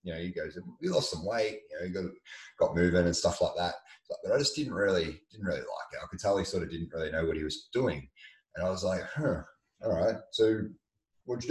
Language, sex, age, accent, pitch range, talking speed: English, male, 30-49, Australian, 85-115 Hz, 255 wpm